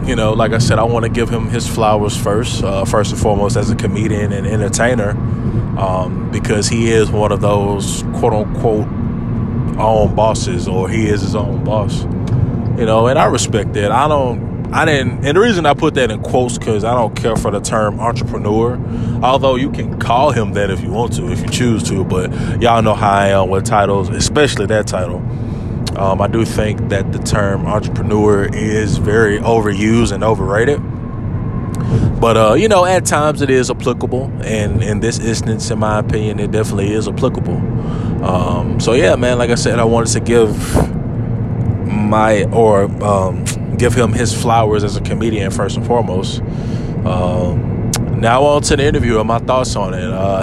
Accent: American